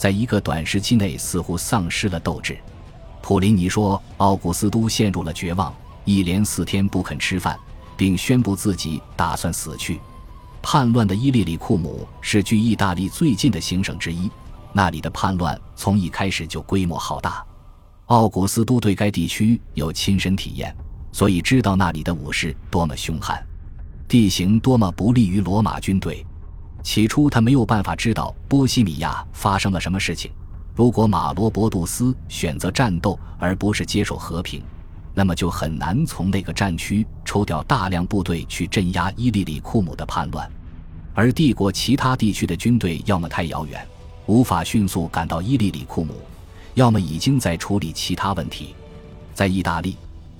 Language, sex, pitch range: Chinese, male, 85-105 Hz